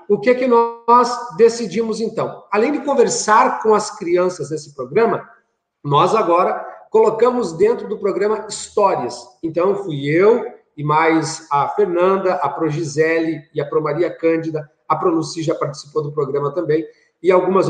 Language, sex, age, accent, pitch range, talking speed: Portuguese, male, 40-59, Brazilian, 180-245 Hz, 160 wpm